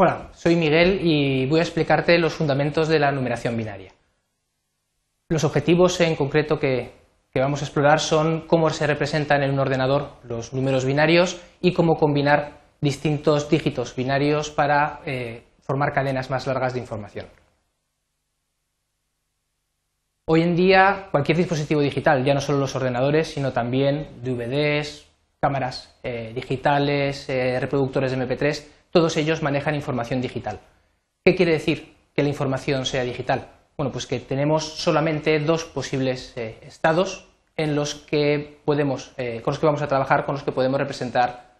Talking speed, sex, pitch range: 135 wpm, male, 130-160 Hz